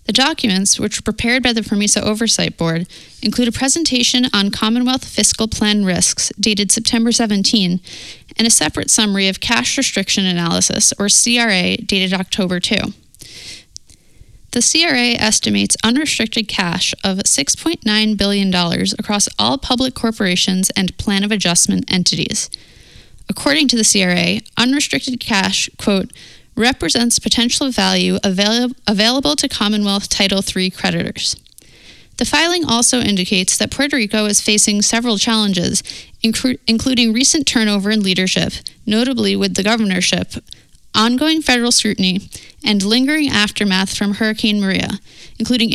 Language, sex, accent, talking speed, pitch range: English, female, American, 125 wpm, 195-240 Hz